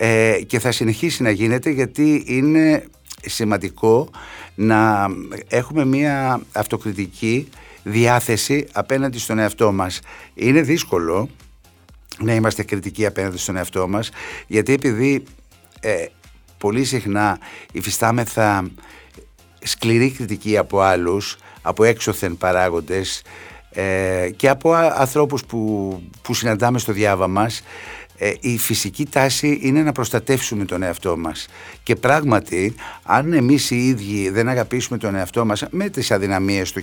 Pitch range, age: 95-125 Hz, 60-79